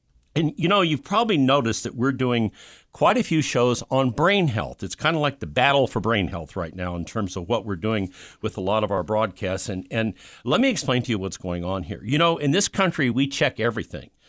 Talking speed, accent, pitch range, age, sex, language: 245 wpm, American, 105-140 Hz, 50-69, male, English